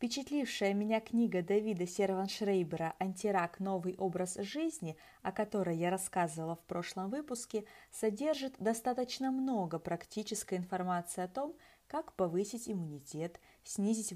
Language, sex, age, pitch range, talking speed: Russian, female, 20-39, 170-225 Hz, 115 wpm